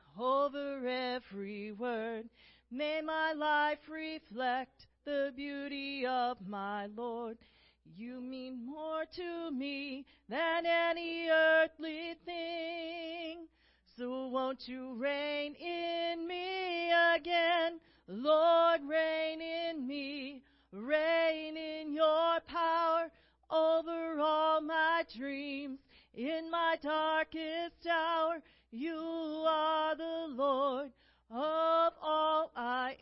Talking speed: 95 wpm